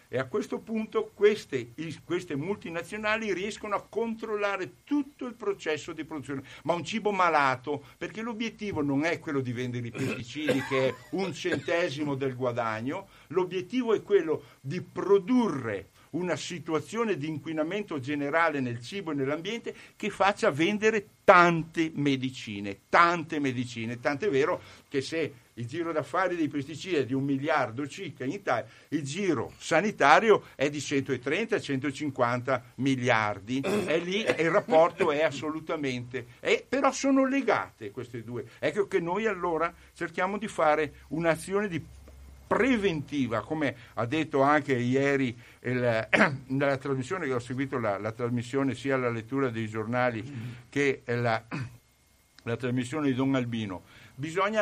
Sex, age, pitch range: male, 60-79, 125-175 Hz